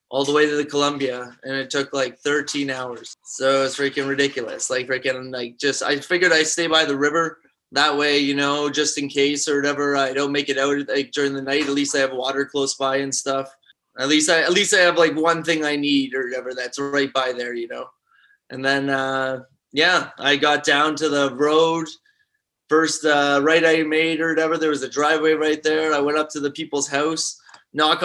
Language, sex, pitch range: English, male, 140-155 Hz